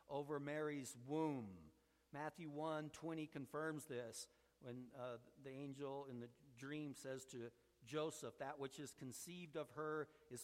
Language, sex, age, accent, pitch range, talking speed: English, male, 50-69, American, 125-150 Hz, 145 wpm